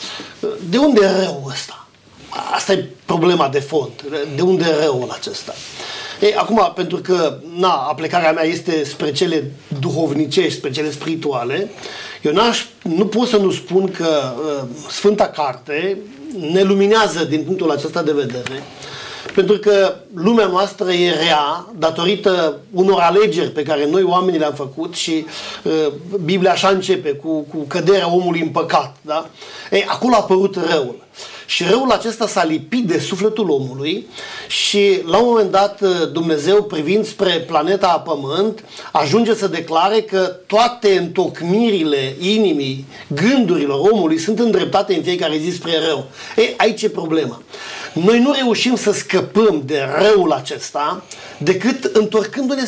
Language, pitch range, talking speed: Romanian, 160-215 Hz, 145 wpm